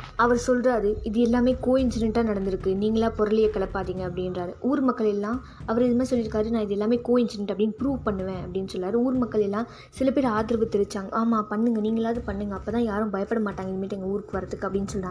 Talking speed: 185 wpm